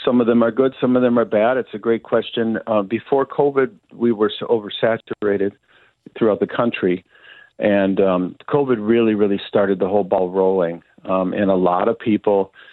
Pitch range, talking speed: 100-115 Hz, 195 wpm